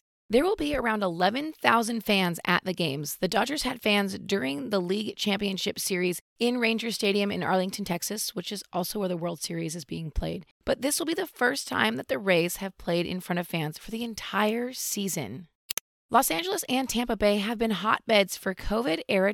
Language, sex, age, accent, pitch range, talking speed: English, female, 30-49, American, 175-230 Hz, 200 wpm